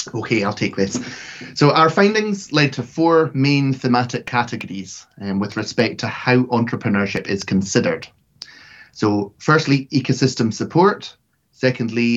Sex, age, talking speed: male, 30-49, 130 wpm